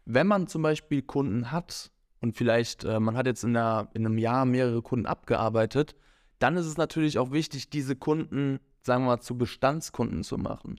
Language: German